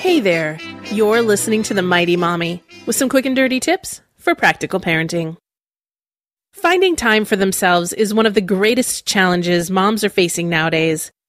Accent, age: American, 30-49